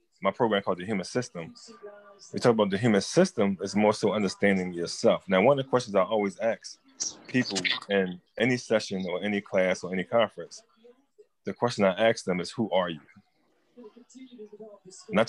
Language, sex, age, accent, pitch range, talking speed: English, male, 20-39, American, 95-120 Hz, 175 wpm